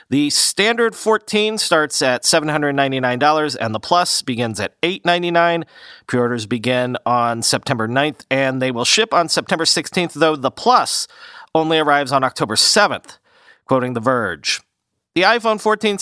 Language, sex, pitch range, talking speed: English, male, 135-175 Hz, 140 wpm